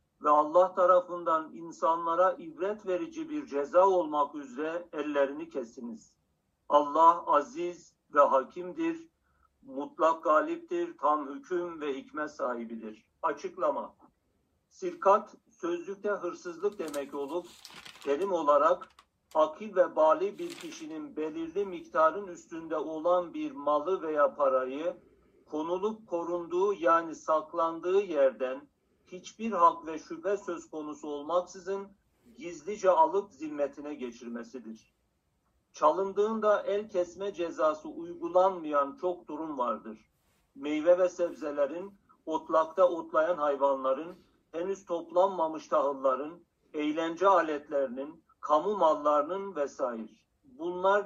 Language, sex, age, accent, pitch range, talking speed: Turkish, male, 60-79, native, 150-200 Hz, 100 wpm